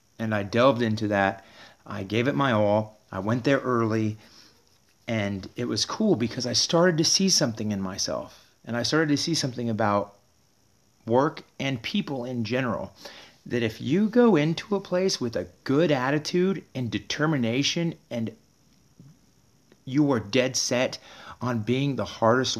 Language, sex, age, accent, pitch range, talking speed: English, male, 40-59, American, 115-150 Hz, 160 wpm